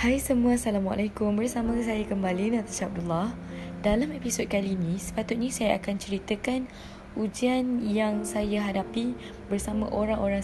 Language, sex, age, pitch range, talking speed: Malay, female, 10-29, 180-220 Hz, 125 wpm